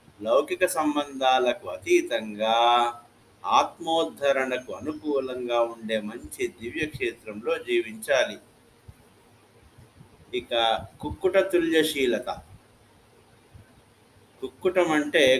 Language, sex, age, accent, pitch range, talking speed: Telugu, male, 50-69, native, 115-170 Hz, 45 wpm